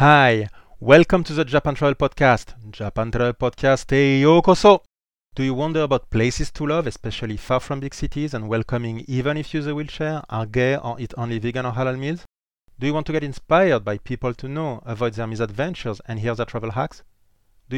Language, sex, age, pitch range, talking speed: English, male, 30-49, 105-135 Hz, 205 wpm